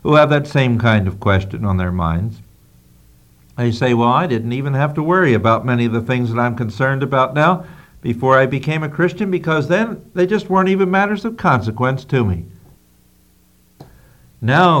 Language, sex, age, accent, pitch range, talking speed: English, male, 60-79, American, 105-160 Hz, 185 wpm